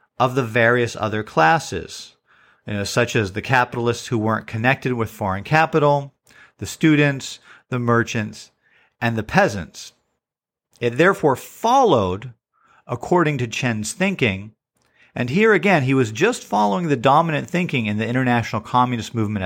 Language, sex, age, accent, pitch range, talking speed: English, male, 40-59, American, 110-145 Hz, 135 wpm